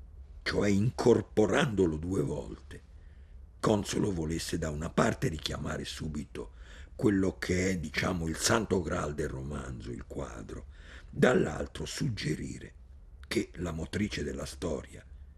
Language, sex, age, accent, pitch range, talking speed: Italian, male, 50-69, native, 70-80 Hz, 115 wpm